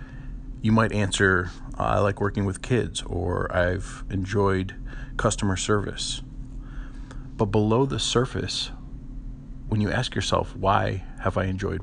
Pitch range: 100-130 Hz